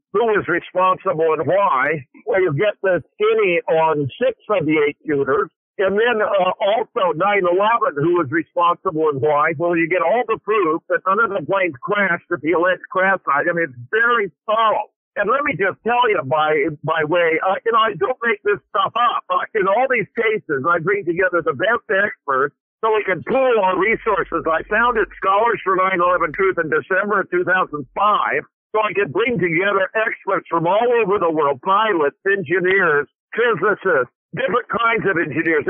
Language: English